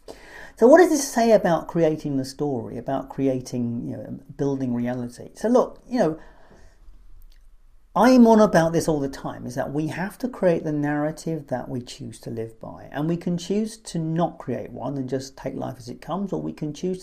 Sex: male